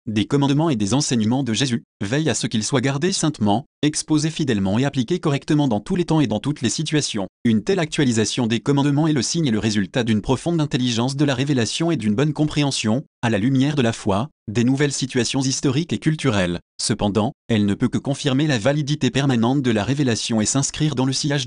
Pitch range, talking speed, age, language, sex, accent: 110-150 Hz, 220 wpm, 30-49, French, male, French